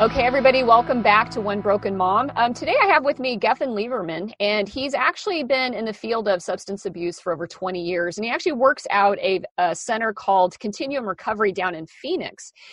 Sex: female